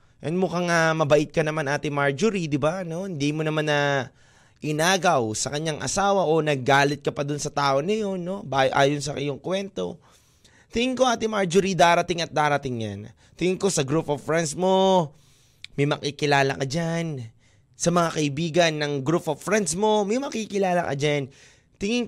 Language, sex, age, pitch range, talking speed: Filipino, male, 20-39, 135-185 Hz, 175 wpm